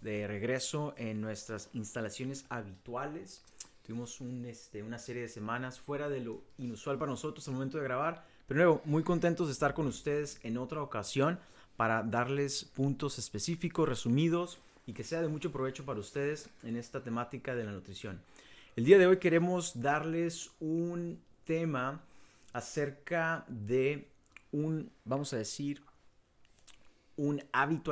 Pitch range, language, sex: 115-150 Hz, Spanish, male